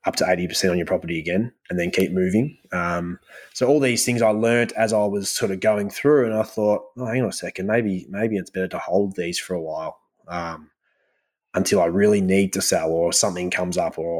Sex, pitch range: male, 90-110 Hz